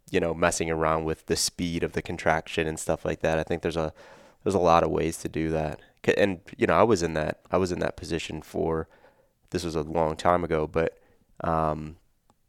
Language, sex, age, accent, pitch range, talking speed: English, male, 20-39, American, 80-90 Hz, 225 wpm